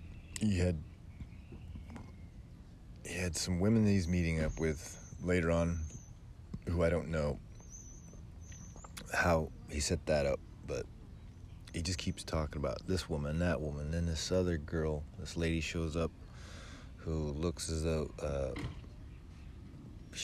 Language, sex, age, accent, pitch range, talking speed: English, male, 40-59, American, 80-95 Hz, 135 wpm